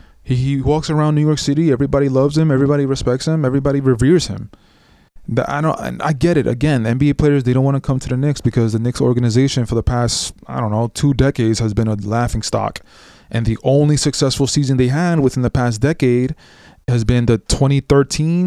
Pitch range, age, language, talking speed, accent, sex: 115-140 Hz, 20-39, English, 210 wpm, American, male